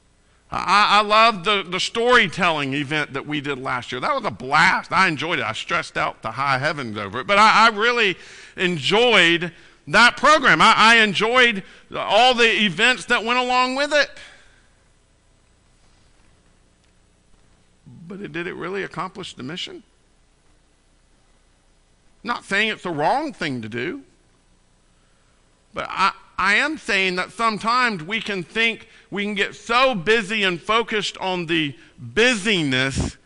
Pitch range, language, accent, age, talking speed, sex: 125-210 Hz, English, American, 50-69, 150 wpm, male